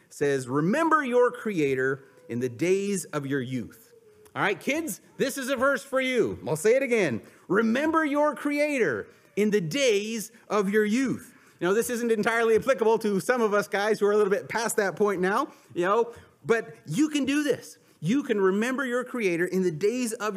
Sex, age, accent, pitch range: male, 30-49, American, 180-245 Hz